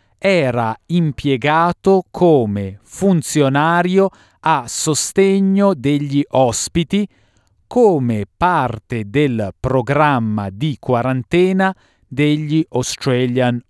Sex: male